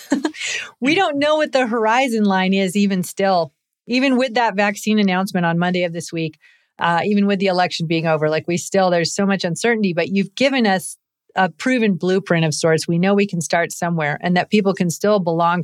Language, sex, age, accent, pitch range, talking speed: English, female, 40-59, American, 170-210 Hz, 210 wpm